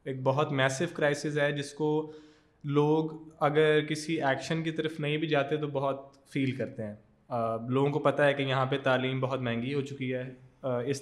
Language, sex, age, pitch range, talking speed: Urdu, male, 20-39, 135-155 Hz, 190 wpm